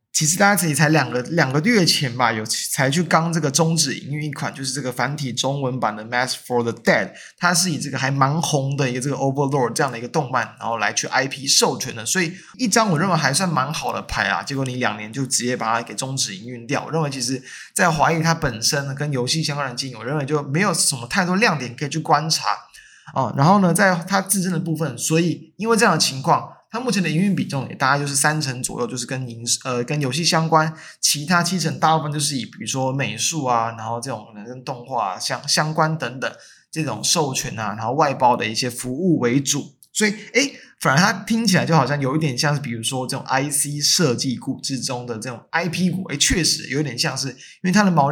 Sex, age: male, 20-39